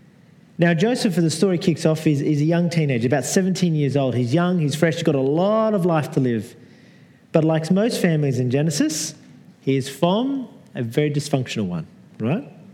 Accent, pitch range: Australian, 145-190 Hz